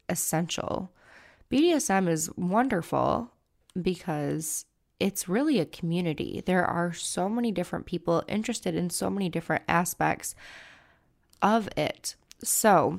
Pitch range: 165-195 Hz